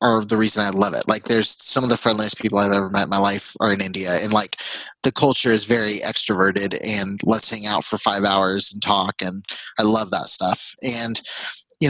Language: English